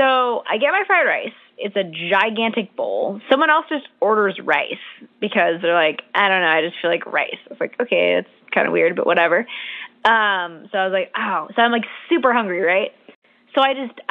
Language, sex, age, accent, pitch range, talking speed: English, female, 20-39, American, 195-250 Hz, 215 wpm